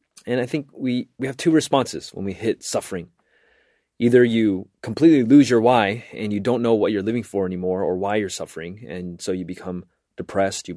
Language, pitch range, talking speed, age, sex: English, 90-125 Hz, 205 wpm, 30-49, male